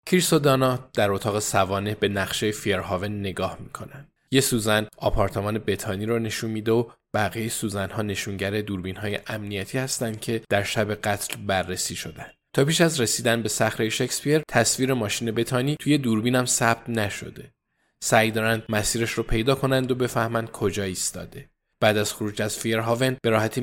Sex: male